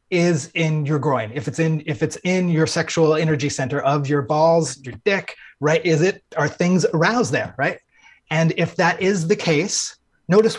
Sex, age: male, 30-49